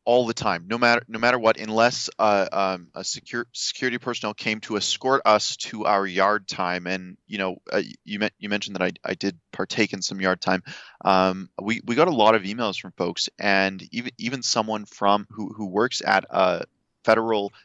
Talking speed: 205 wpm